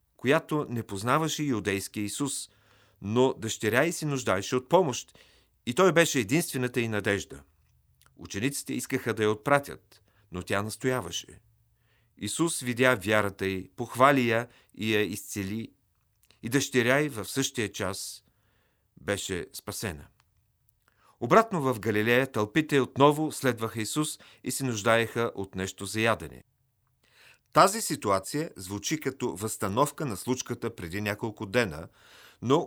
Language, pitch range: Bulgarian, 105-135 Hz